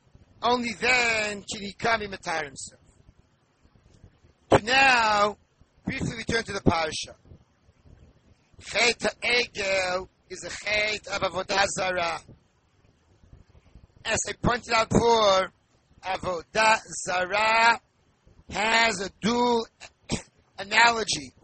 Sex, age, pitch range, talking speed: male, 50-69, 190-240 Hz, 95 wpm